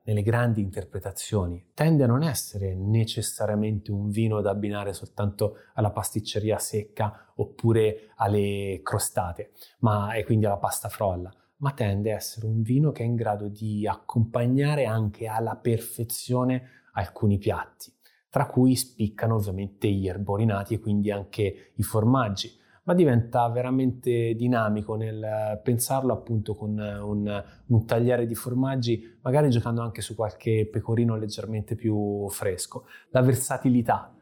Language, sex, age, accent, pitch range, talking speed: Italian, male, 20-39, native, 105-125 Hz, 135 wpm